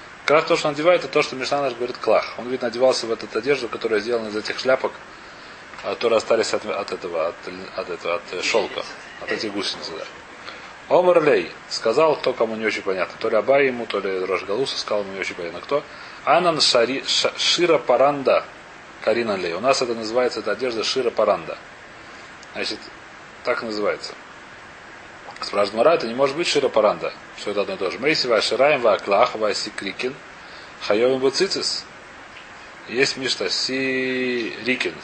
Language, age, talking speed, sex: Russian, 30-49, 155 wpm, male